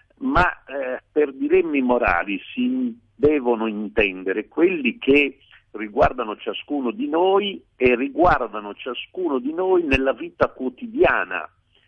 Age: 50-69